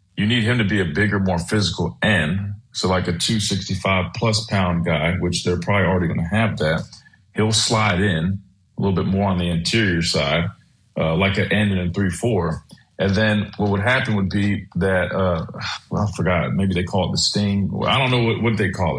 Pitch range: 95-110 Hz